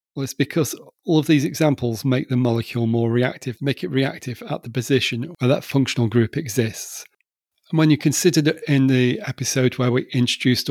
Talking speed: 185 wpm